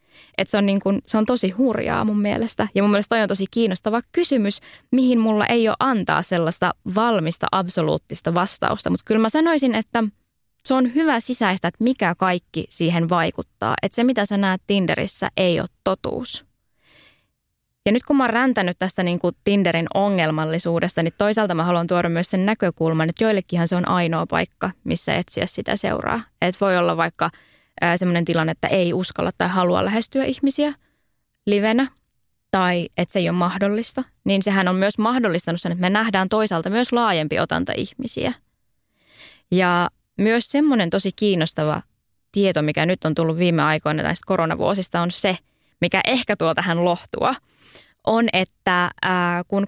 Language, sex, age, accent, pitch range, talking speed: Finnish, female, 20-39, native, 170-220 Hz, 165 wpm